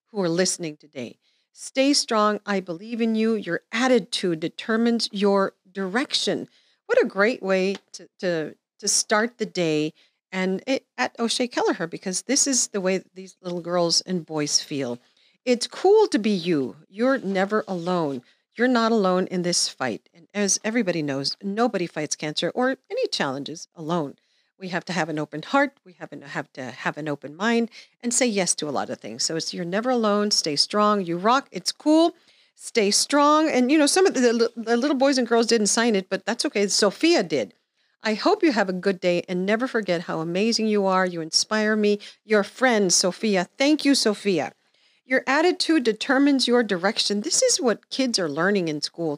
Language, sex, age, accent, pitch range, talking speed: English, female, 40-59, American, 175-240 Hz, 195 wpm